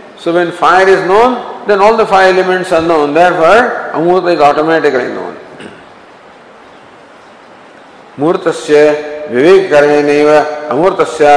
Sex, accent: male, Indian